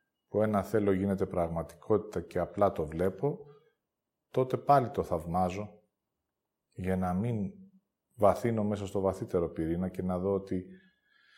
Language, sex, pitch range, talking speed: Greek, male, 95-130 Hz, 130 wpm